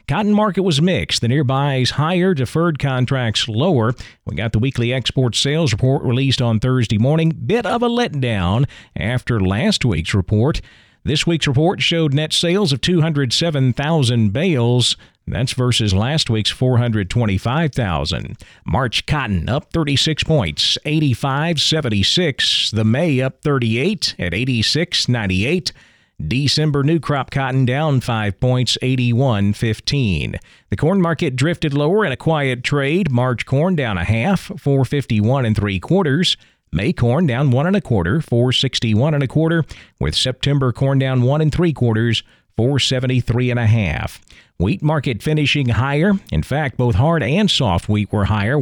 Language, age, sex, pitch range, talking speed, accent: English, 40-59, male, 115-155 Hz, 145 wpm, American